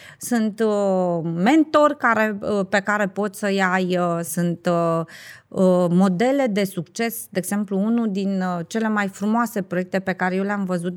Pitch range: 185-245 Hz